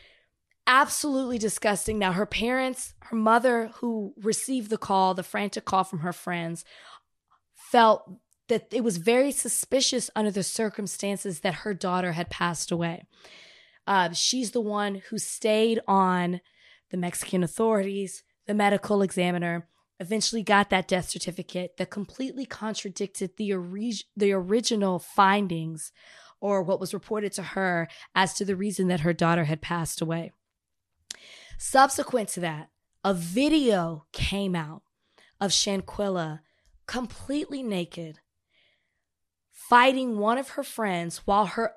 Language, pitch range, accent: English, 185-230 Hz, American